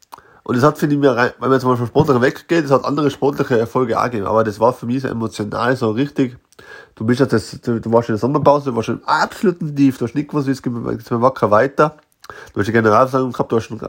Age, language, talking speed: 20-39, German, 255 wpm